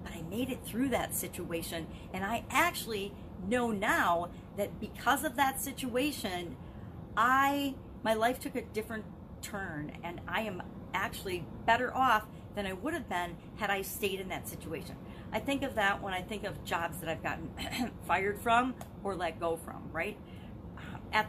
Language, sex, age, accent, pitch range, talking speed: English, female, 40-59, American, 170-230 Hz, 170 wpm